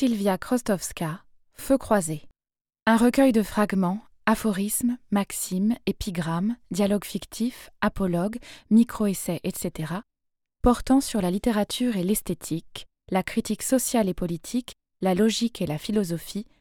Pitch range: 175-230 Hz